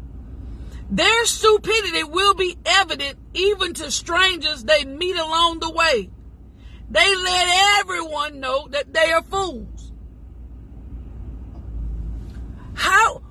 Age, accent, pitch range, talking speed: 50-69, American, 235-330 Hz, 100 wpm